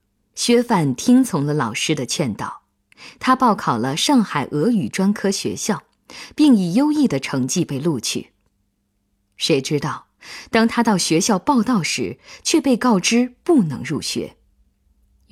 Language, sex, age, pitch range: Chinese, female, 20-39, 150-240 Hz